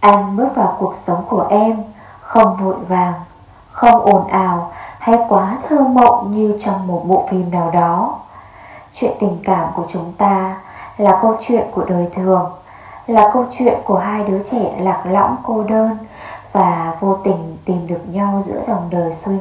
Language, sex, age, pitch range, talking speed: Vietnamese, female, 20-39, 175-220 Hz, 175 wpm